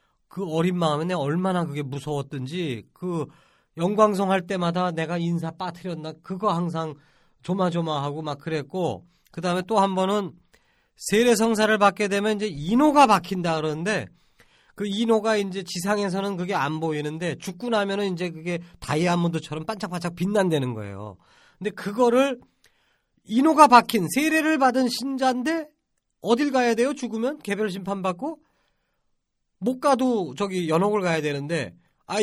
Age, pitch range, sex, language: 40-59, 155-210 Hz, male, Korean